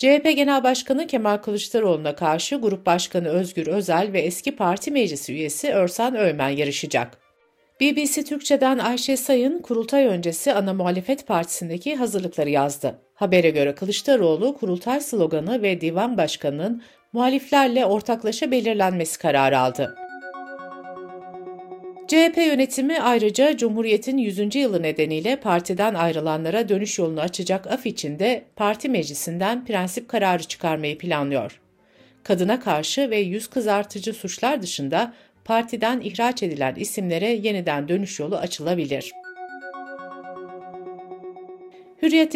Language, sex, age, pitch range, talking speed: Turkish, female, 60-79, 170-250 Hz, 110 wpm